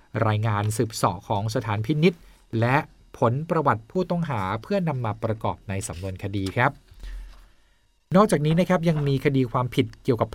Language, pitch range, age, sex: Thai, 110-135 Hz, 20-39, male